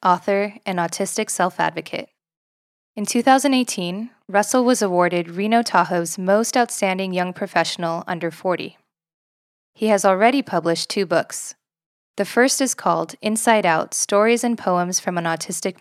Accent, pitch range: American, 170-210 Hz